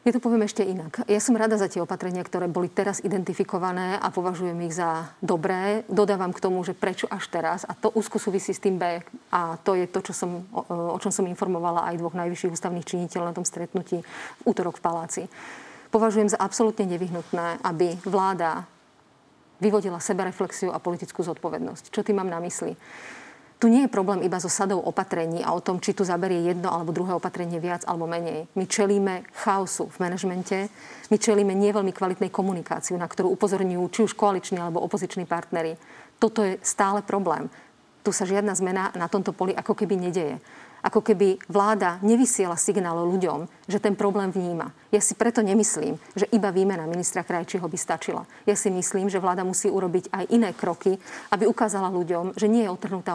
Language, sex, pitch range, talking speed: Slovak, female, 180-205 Hz, 185 wpm